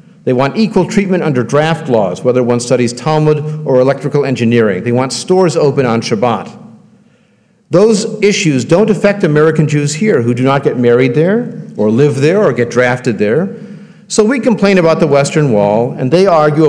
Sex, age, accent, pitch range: male, 50-69, American, 135-185 Hz